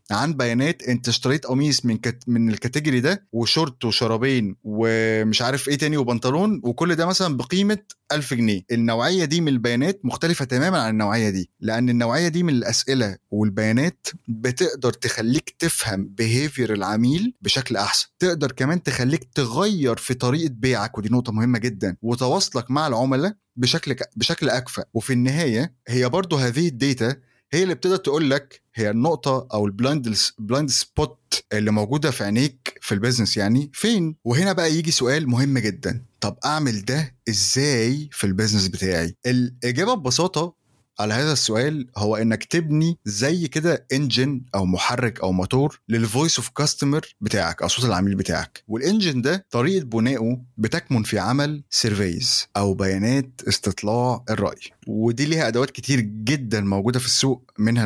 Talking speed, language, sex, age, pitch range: 150 wpm, Arabic, male, 20-39, 110-145 Hz